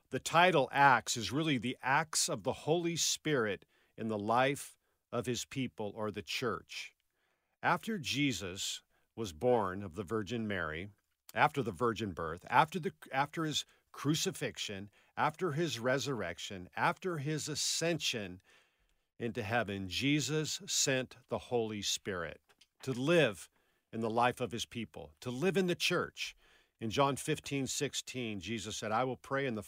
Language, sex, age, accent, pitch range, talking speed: English, male, 50-69, American, 110-150 Hz, 150 wpm